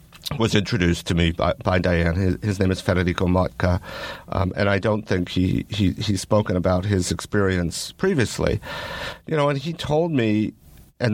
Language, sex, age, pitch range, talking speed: English, male, 50-69, 90-110 Hz, 180 wpm